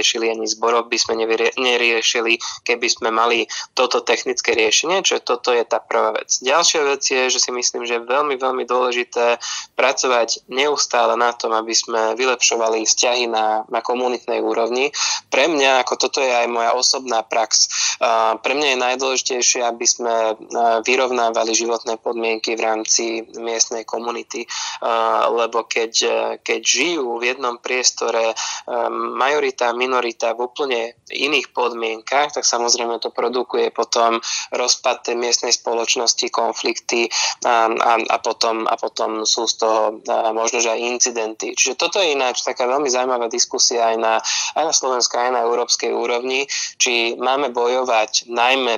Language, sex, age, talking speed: Slovak, male, 20-39, 155 wpm